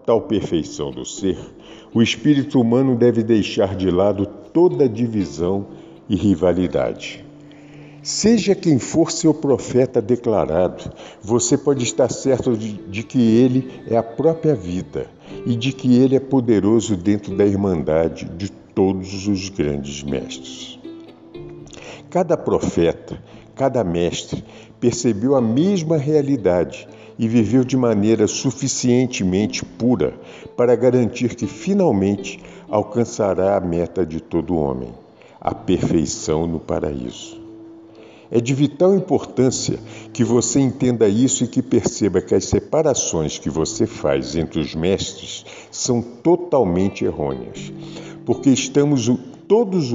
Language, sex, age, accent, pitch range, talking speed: Portuguese, male, 50-69, Brazilian, 95-135 Hz, 120 wpm